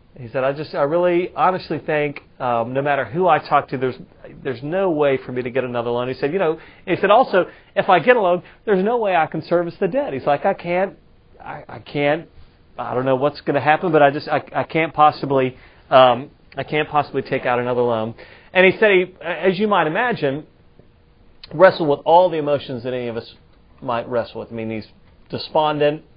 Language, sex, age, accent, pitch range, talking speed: English, male, 40-59, American, 120-155 Hz, 225 wpm